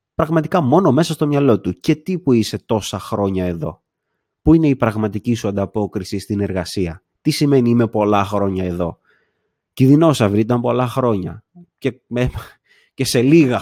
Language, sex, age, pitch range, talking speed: Greek, male, 30-49, 105-160 Hz, 155 wpm